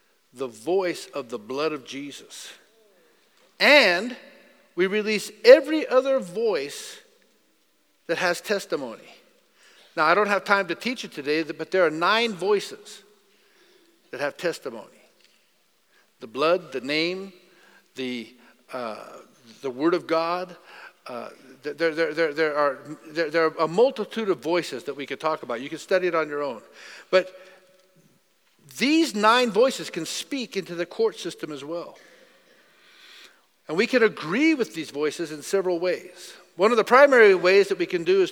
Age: 50-69